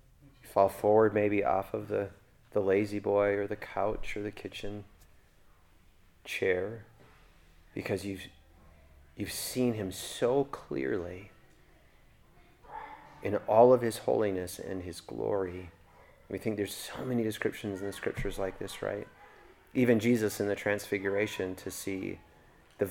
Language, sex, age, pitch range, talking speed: English, male, 30-49, 95-105 Hz, 135 wpm